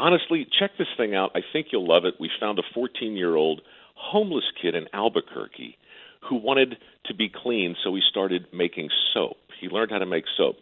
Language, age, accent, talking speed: English, 50-69, American, 190 wpm